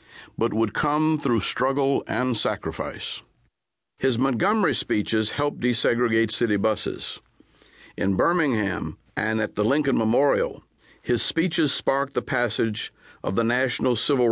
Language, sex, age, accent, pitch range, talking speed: English, male, 50-69, American, 110-135 Hz, 125 wpm